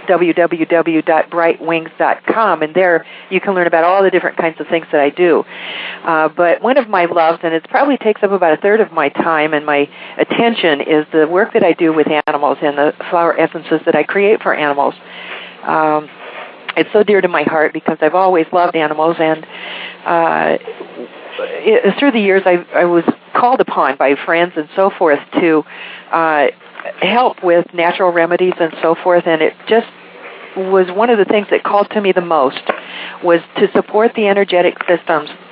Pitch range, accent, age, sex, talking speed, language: 155-195 Hz, American, 50-69, female, 185 wpm, English